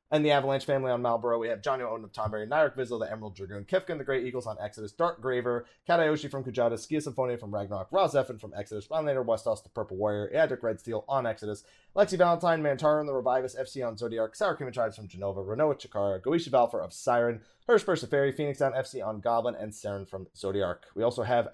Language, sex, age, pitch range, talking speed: English, male, 30-49, 110-150 Hz, 215 wpm